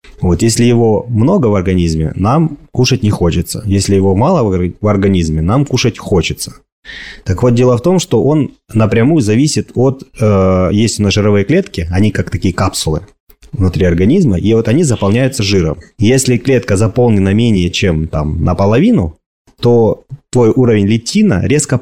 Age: 30-49